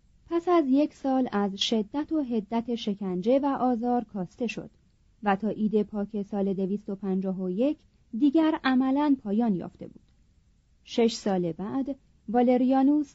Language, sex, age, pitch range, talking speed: Persian, female, 30-49, 195-260 Hz, 130 wpm